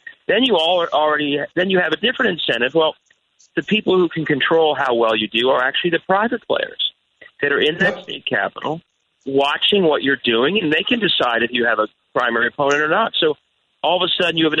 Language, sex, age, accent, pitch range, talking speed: English, male, 40-59, American, 140-200 Hz, 230 wpm